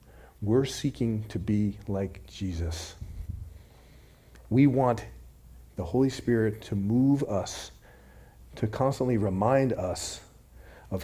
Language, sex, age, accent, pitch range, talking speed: English, male, 40-59, American, 85-130 Hz, 105 wpm